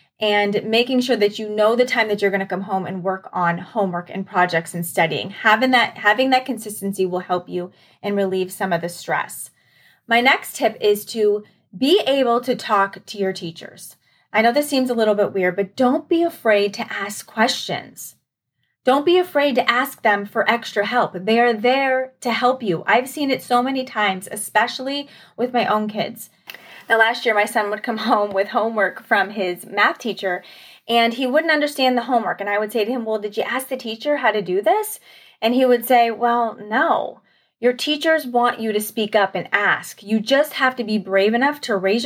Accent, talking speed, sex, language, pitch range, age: American, 210 wpm, female, English, 200-250 Hz, 30-49